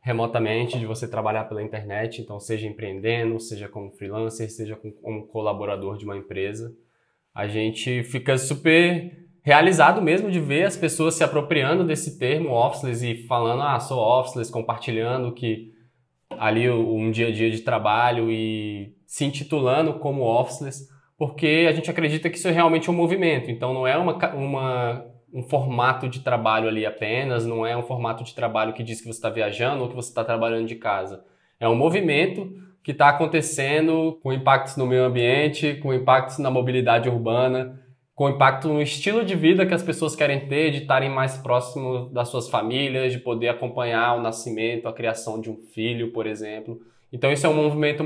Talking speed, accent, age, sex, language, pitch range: 180 wpm, Brazilian, 20-39, male, Portuguese, 115-150 Hz